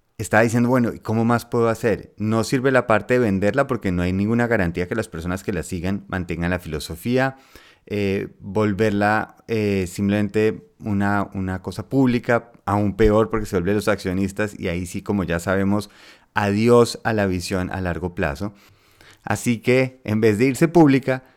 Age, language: 30-49, Spanish